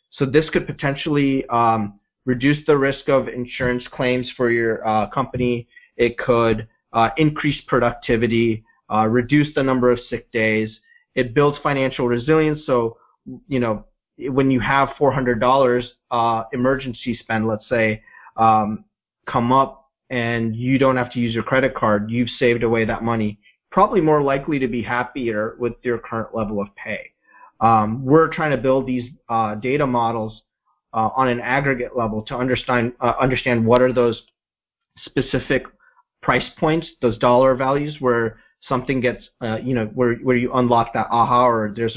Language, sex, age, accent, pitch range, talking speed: English, male, 30-49, American, 115-135 Hz, 160 wpm